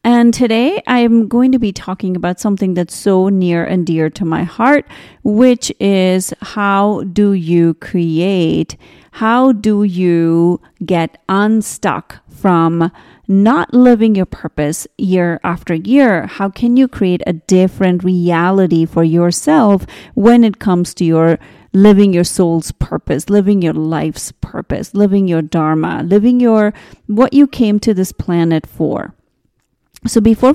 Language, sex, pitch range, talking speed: English, female, 175-225 Hz, 140 wpm